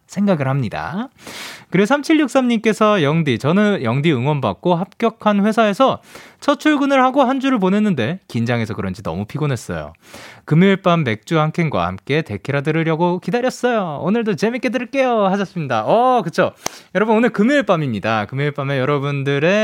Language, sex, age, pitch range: Korean, male, 20-39, 145-225 Hz